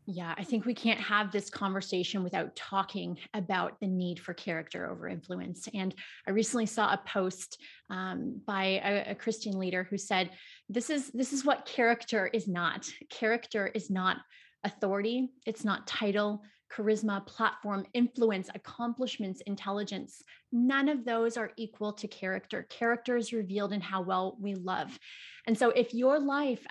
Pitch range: 200-240 Hz